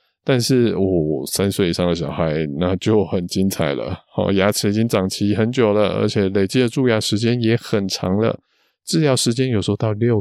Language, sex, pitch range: Chinese, male, 90-120 Hz